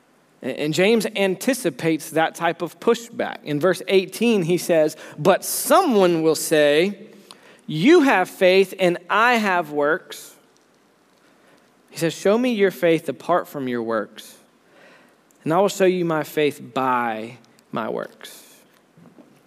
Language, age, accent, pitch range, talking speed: English, 20-39, American, 160-235 Hz, 135 wpm